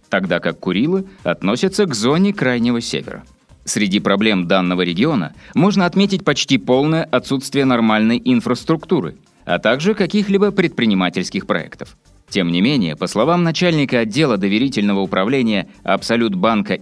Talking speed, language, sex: 120 wpm, Russian, male